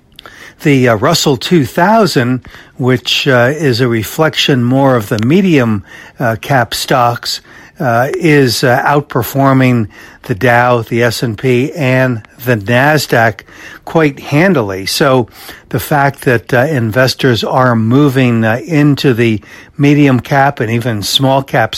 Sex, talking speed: male, 125 wpm